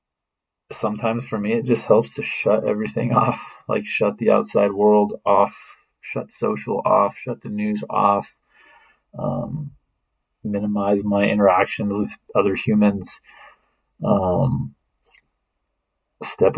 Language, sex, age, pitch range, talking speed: English, male, 20-39, 100-140 Hz, 115 wpm